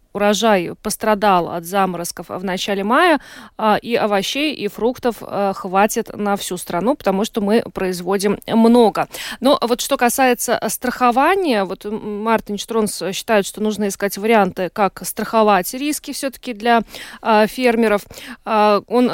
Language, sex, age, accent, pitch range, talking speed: Russian, female, 20-39, native, 195-235 Hz, 125 wpm